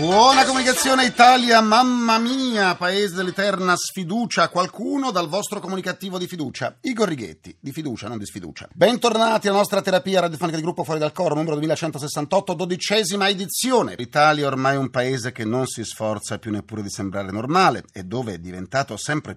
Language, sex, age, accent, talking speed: Italian, male, 40-59, native, 170 wpm